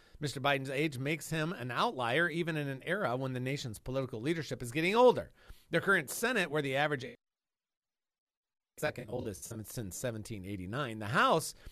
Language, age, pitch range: English, 40-59, 115-165 Hz